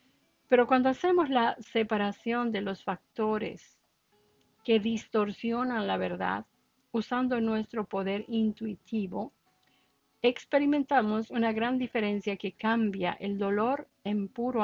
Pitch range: 200-245 Hz